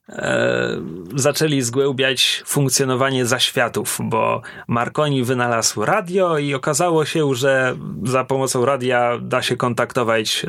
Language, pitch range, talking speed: Polish, 130-180 Hz, 105 wpm